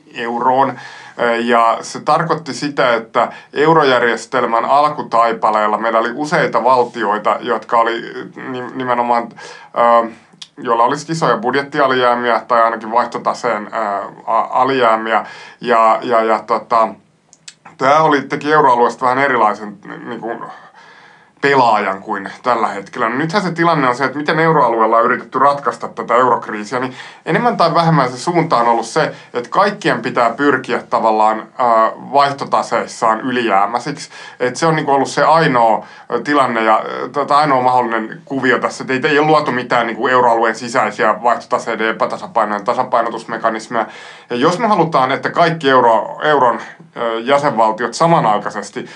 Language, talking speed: Finnish, 120 wpm